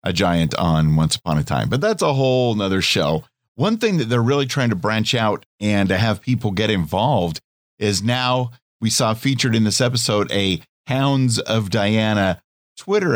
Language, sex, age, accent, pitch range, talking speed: English, male, 50-69, American, 100-125 Hz, 185 wpm